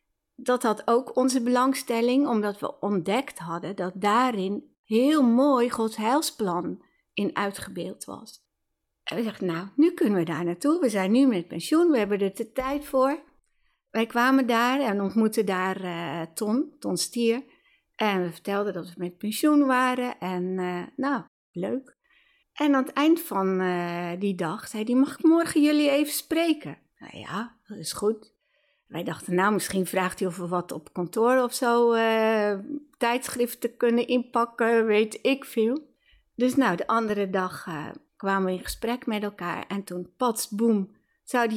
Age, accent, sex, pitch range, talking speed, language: 60-79, Dutch, female, 185-255 Hz, 170 wpm, Dutch